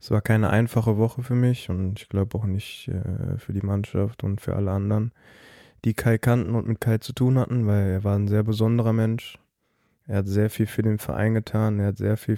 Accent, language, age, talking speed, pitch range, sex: German, German, 20-39, 235 wpm, 105-115 Hz, male